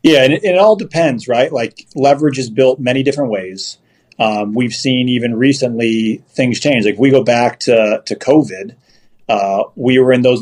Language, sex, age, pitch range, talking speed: English, male, 40-59, 110-130 Hz, 195 wpm